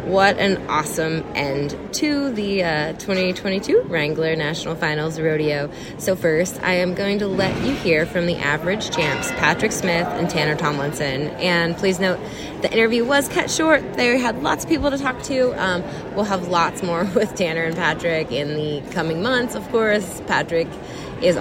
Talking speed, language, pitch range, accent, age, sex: 175 wpm, English, 160-190 Hz, American, 20-39, female